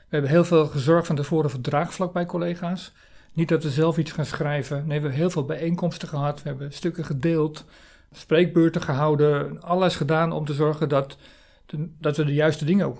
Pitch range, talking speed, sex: 145-170 Hz, 200 wpm, male